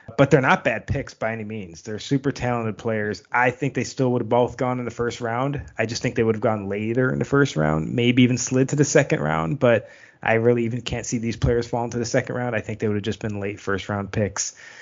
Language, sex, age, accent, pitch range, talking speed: English, male, 20-39, American, 110-130 Hz, 270 wpm